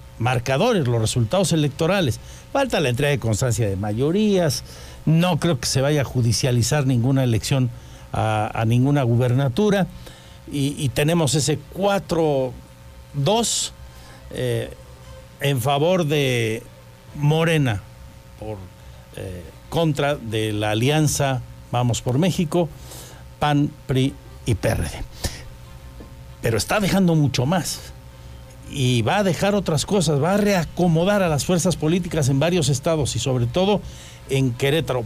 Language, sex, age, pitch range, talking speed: Spanish, male, 60-79, 110-165 Hz, 125 wpm